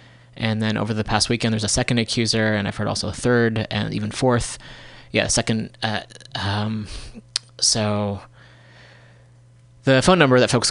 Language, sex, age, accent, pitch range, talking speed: English, male, 20-39, American, 105-120 Hz, 160 wpm